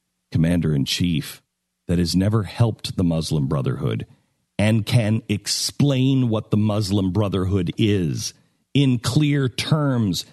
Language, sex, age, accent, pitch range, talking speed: English, male, 50-69, American, 95-130 Hz, 110 wpm